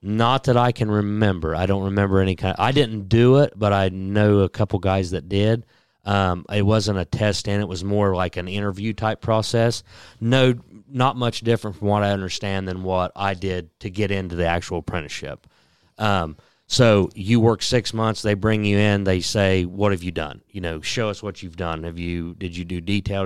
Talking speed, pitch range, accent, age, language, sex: 215 wpm, 90-105 Hz, American, 30-49, English, male